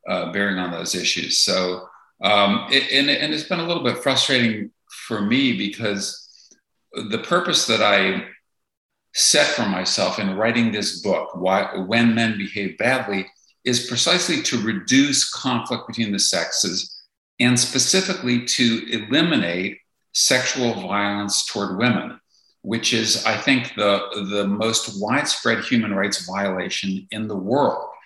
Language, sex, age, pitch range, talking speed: English, male, 50-69, 100-125 Hz, 140 wpm